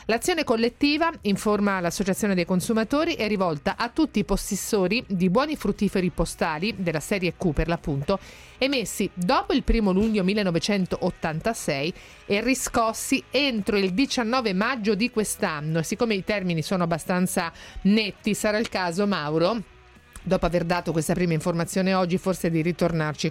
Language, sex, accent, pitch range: Italian, female, native, 175-225 Hz